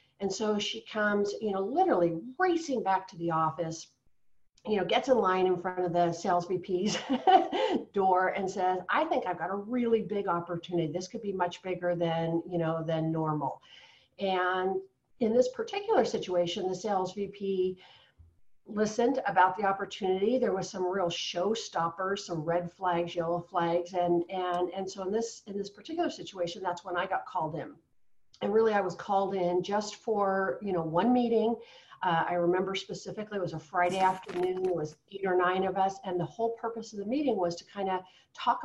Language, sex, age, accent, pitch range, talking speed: English, female, 50-69, American, 175-210 Hz, 190 wpm